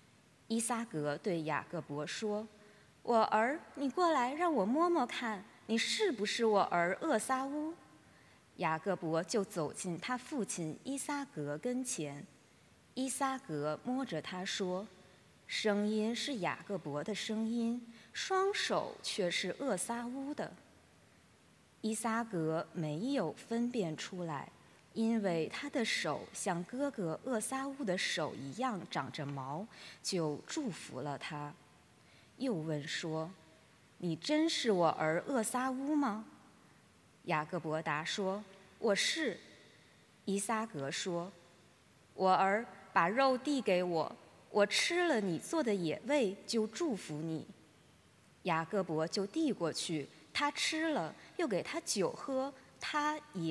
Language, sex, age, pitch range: English, female, 20-39, 165-260 Hz